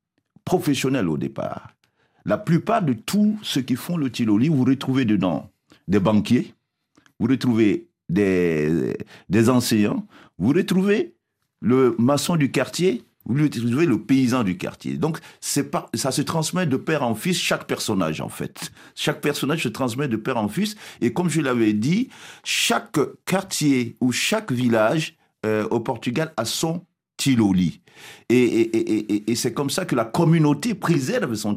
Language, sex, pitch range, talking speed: French, male, 120-175 Hz, 160 wpm